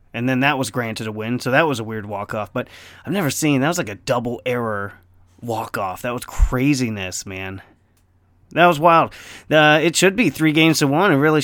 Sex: male